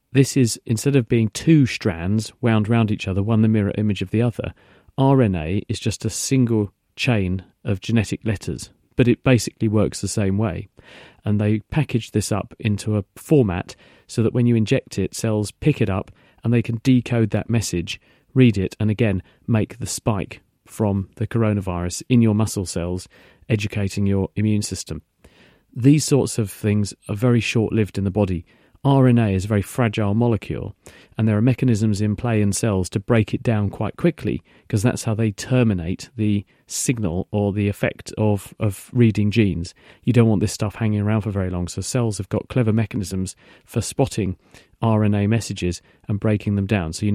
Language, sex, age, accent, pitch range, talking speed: English, male, 40-59, British, 100-120 Hz, 185 wpm